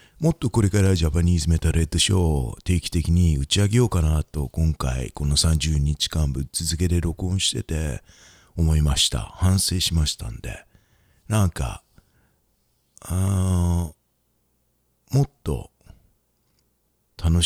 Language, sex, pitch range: English, male, 75-95 Hz